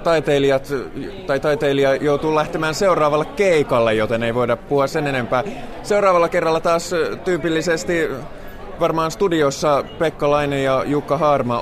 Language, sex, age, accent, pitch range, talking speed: Finnish, male, 20-39, native, 130-160 Hz, 120 wpm